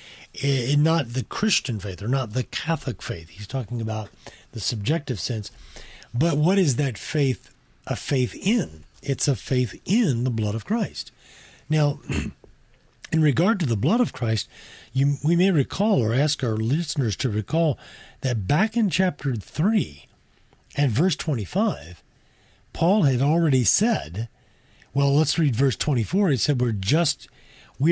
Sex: male